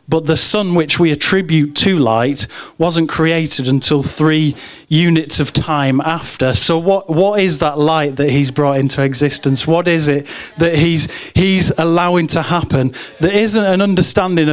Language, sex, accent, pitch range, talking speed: English, male, British, 145-170 Hz, 165 wpm